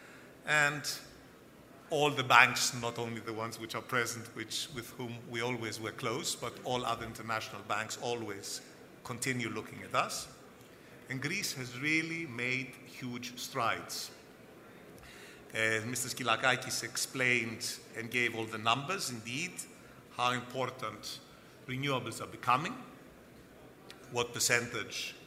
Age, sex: 50-69, male